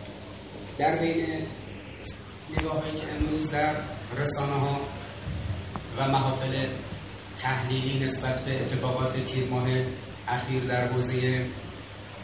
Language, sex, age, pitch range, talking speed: Persian, male, 30-49, 115-145 Hz, 95 wpm